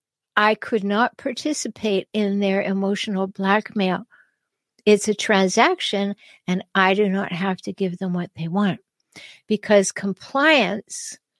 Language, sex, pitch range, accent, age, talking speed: English, female, 205-260 Hz, American, 60-79, 125 wpm